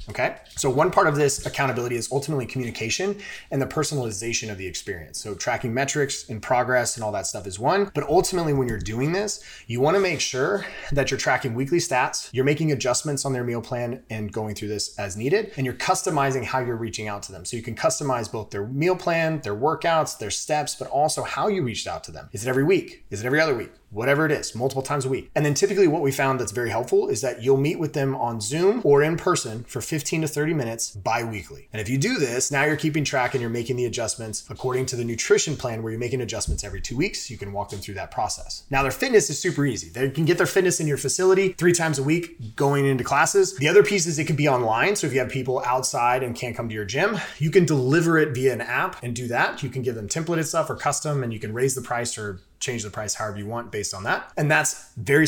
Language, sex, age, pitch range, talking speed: English, male, 30-49, 115-155 Hz, 260 wpm